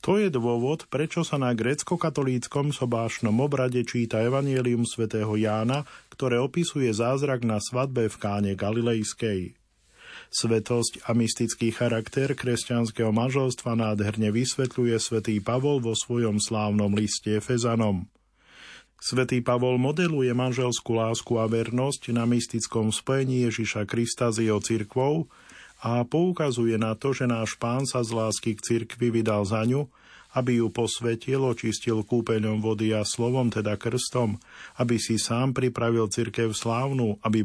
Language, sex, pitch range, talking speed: Slovak, male, 110-130 Hz, 135 wpm